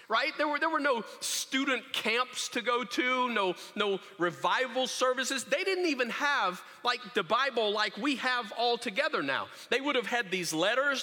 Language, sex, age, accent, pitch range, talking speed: English, male, 40-59, American, 195-260 Hz, 185 wpm